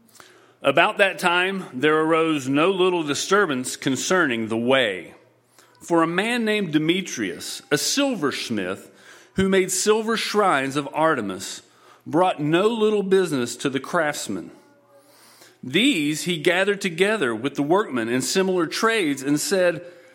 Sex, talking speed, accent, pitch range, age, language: male, 130 wpm, American, 150-215 Hz, 40-59, English